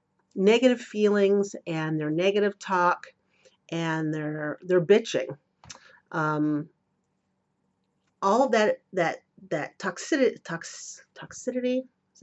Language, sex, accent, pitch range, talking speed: English, female, American, 175-215 Hz, 100 wpm